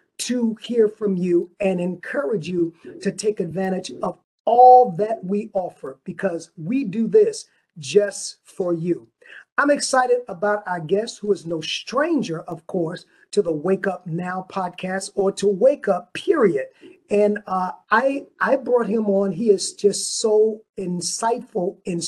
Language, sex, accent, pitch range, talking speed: English, male, American, 185-235 Hz, 155 wpm